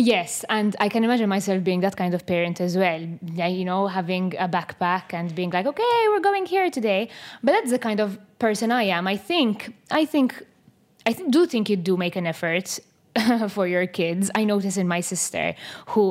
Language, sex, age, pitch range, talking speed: English, female, 20-39, 175-225 Hz, 205 wpm